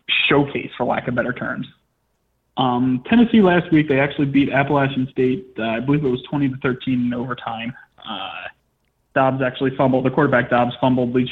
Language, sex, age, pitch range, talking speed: English, male, 20-39, 125-145 Hz, 175 wpm